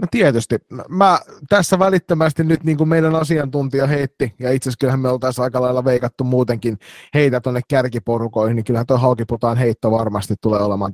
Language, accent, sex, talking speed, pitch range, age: Finnish, native, male, 165 wpm, 110-135 Hz, 30-49